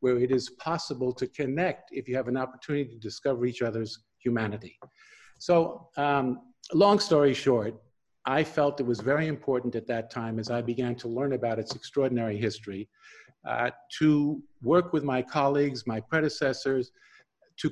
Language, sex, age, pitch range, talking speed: English, male, 50-69, 120-155 Hz, 165 wpm